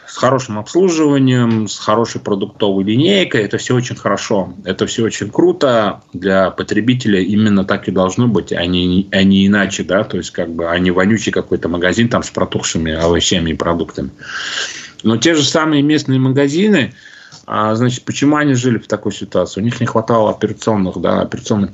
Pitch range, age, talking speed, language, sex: 100-140 Hz, 30-49, 165 wpm, Russian, male